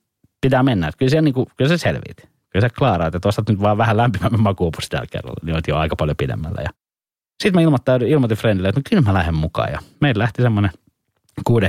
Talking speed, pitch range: 200 wpm, 85-105 Hz